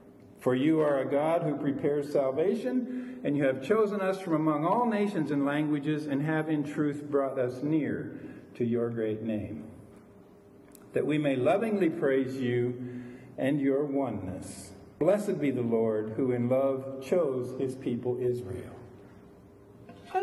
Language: English